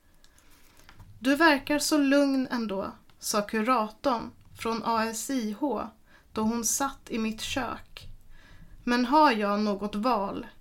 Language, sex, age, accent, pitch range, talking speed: Swedish, female, 30-49, native, 210-245 Hz, 115 wpm